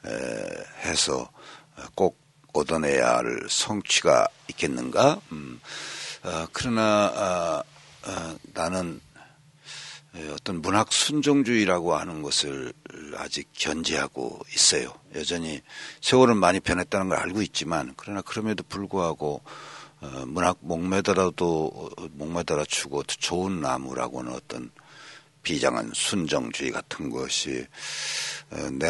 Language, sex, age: Korean, male, 60-79